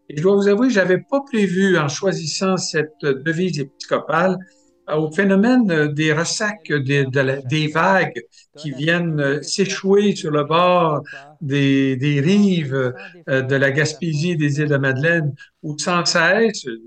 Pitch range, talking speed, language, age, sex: 145-185 Hz, 145 wpm, French, 60-79, male